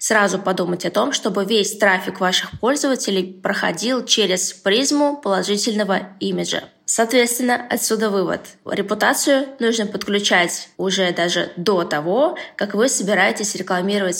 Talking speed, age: 120 wpm, 20-39